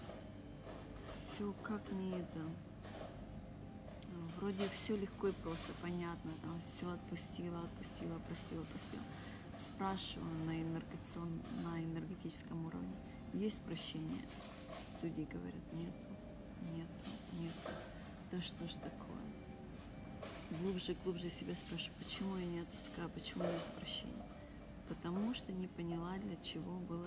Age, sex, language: 30-49, female, Russian